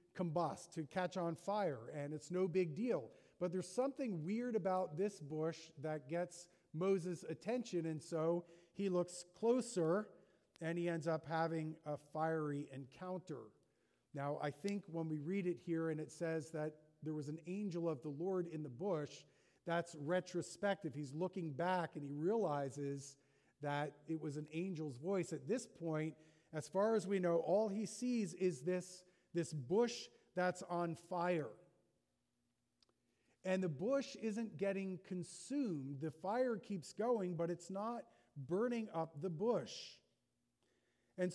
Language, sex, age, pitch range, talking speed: English, male, 40-59, 160-190 Hz, 155 wpm